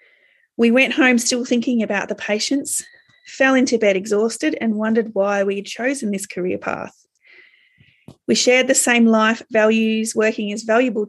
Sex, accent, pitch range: female, Australian, 210-255 Hz